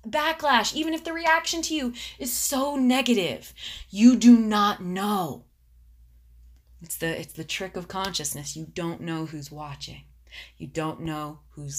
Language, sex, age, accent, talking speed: English, female, 20-39, American, 155 wpm